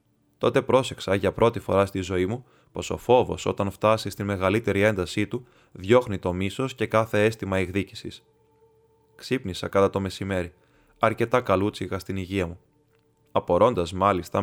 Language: Greek